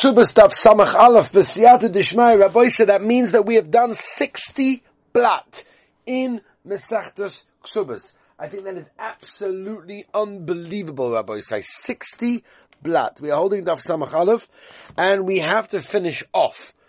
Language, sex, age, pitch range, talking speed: English, male, 40-59, 145-220 Hz, 115 wpm